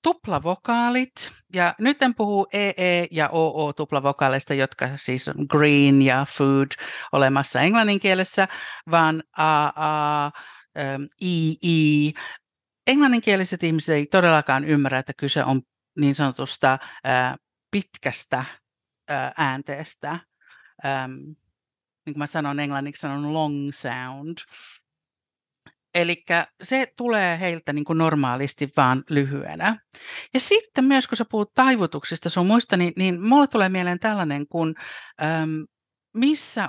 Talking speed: 115 wpm